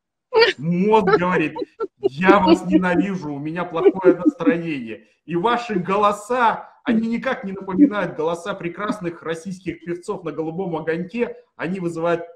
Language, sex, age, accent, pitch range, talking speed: Russian, male, 30-49, native, 150-205 Hz, 120 wpm